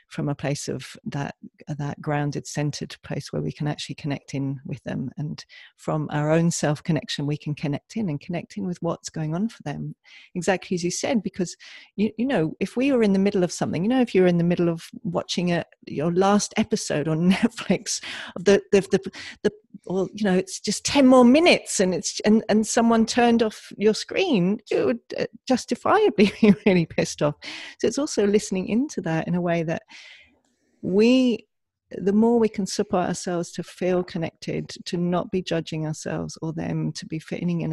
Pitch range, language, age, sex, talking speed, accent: 155-210 Hz, English, 40-59, female, 200 wpm, British